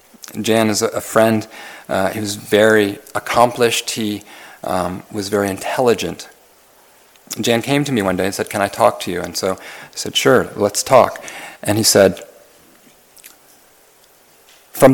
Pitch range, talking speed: 95-125 Hz, 155 wpm